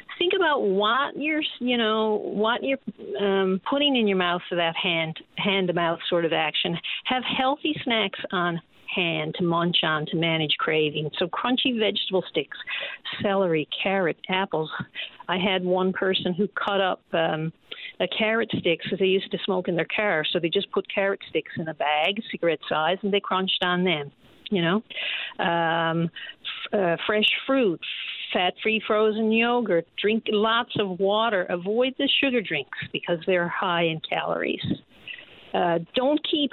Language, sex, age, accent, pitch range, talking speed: English, female, 50-69, American, 175-225 Hz, 170 wpm